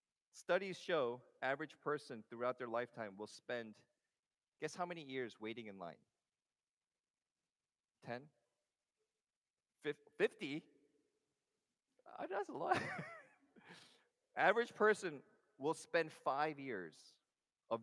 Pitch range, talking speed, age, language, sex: 120-170 Hz, 95 wpm, 40-59, English, male